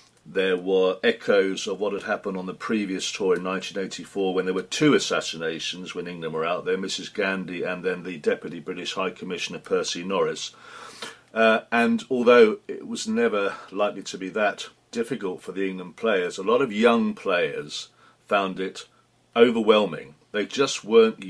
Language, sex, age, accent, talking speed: English, male, 50-69, British, 170 wpm